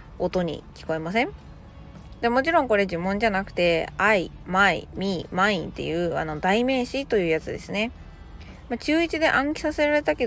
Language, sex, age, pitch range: Japanese, female, 20-39, 170-240 Hz